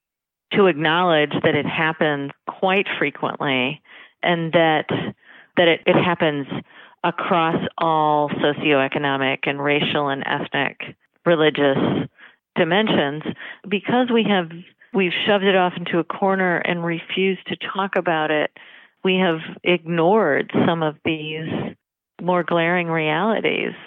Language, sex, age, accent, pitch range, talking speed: English, female, 40-59, American, 150-185 Hz, 120 wpm